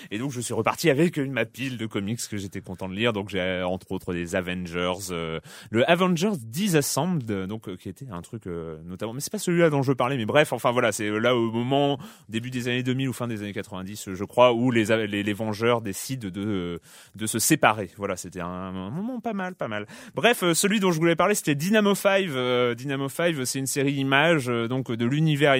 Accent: French